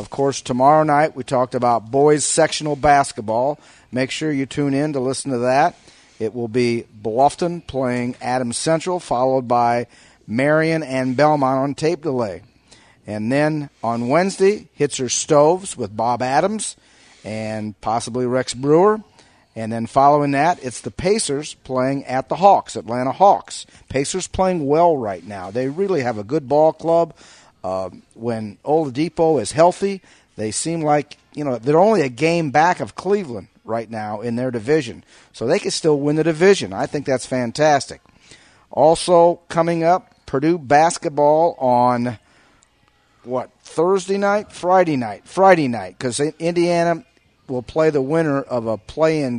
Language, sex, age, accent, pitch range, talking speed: English, male, 50-69, American, 125-160 Hz, 155 wpm